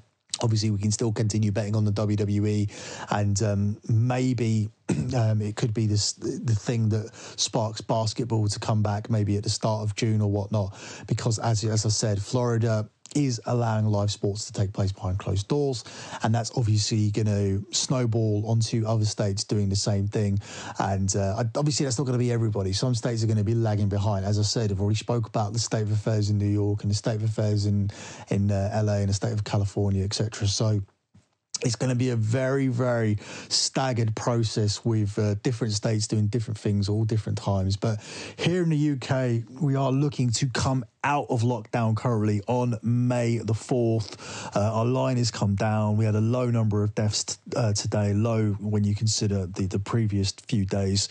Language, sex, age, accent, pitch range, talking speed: English, male, 30-49, British, 105-120 Hz, 200 wpm